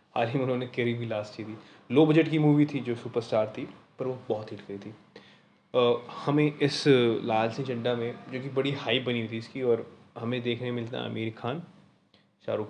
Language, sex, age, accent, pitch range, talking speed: Hindi, male, 20-39, native, 110-125 Hz, 210 wpm